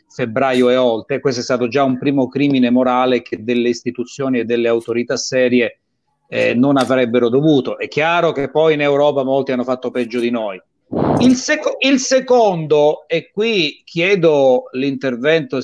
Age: 30-49